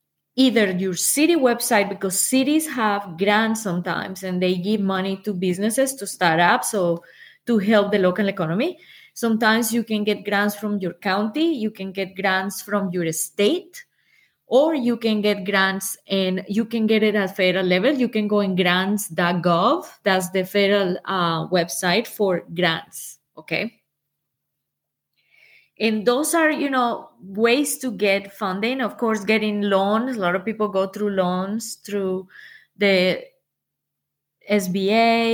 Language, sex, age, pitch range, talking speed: English, female, 20-39, 185-225 Hz, 150 wpm